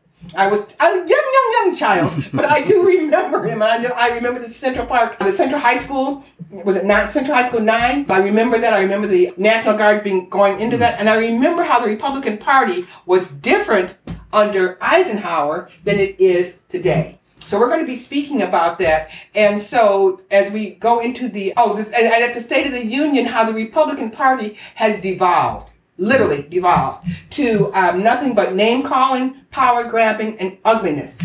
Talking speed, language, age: 185 wpm, English, 50-69